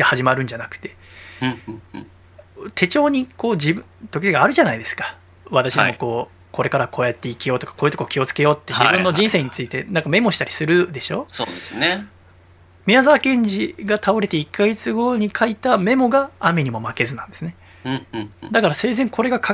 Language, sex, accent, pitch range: Japanese, male, native, 125-195 Hz